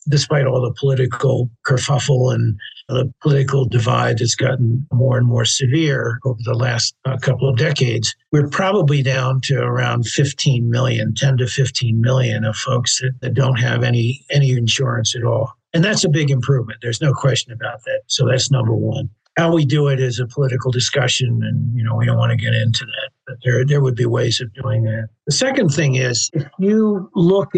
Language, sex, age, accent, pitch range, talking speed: English, male, 50-69, American, 120-140 Hz, 200 wpm